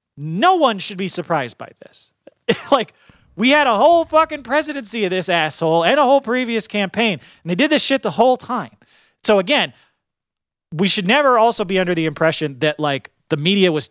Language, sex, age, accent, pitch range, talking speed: English, male, 30-49, American, 145-195 Hz, 195 wpm